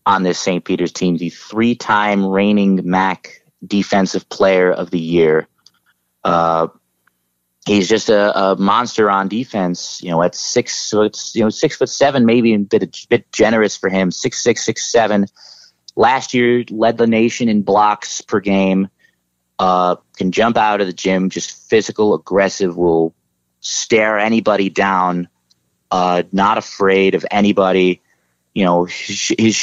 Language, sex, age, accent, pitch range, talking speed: English, male, 30-49, American, 90-110 Hz, 155 wpm